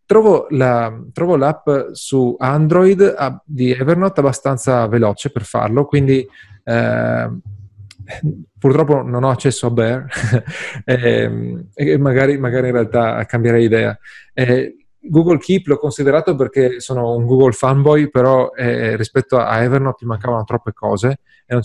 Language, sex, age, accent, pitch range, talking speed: Italian, male, 30-49, native, 115-140 Hz, 135 wpm